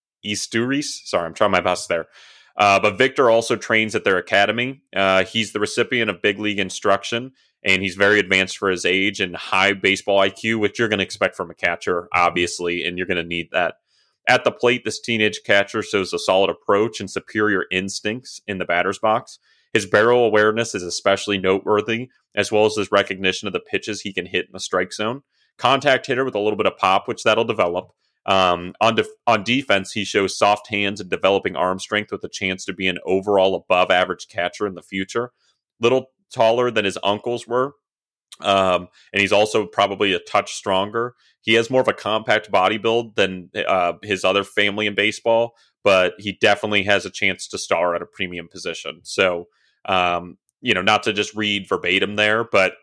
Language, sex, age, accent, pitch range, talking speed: English, male, 30-49, American, 95-115 Hz, 200 wpm